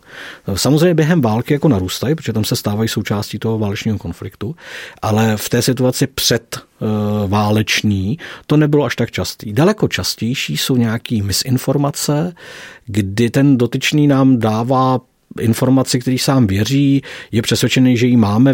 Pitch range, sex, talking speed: 110-135 Hz, male, 135 wpm